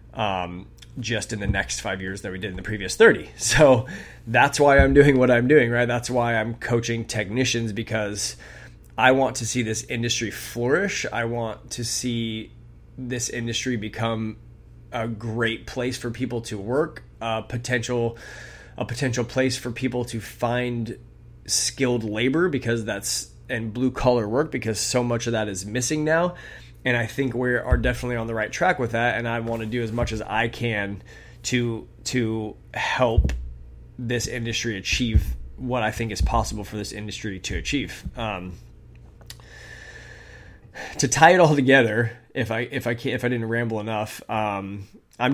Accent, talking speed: American, 175 wpm